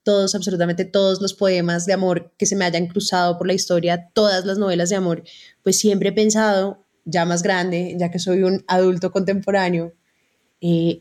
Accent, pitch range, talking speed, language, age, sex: Colombian, 175-200 Hz, 185 wpm, Spanish, 20-39, female